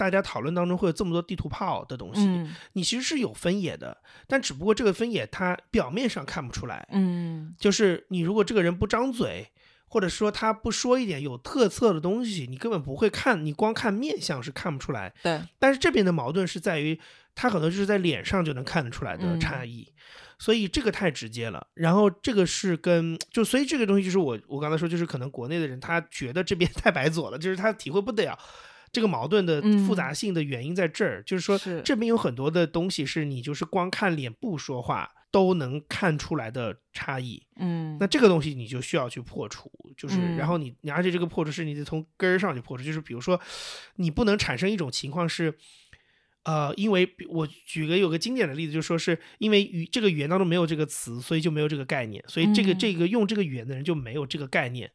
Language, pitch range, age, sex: Chinese, 150-200 Hz, 30-49, male